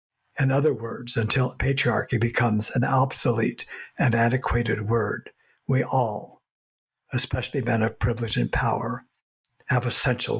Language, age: English, 60-79